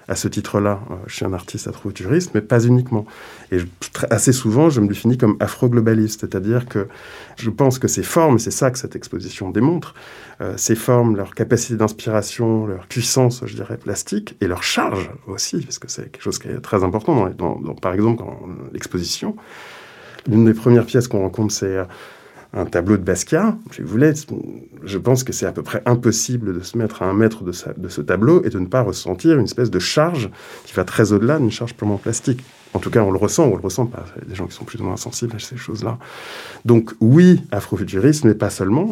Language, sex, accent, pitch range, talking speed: French, male, French, 100-125 Hz, 225 wpm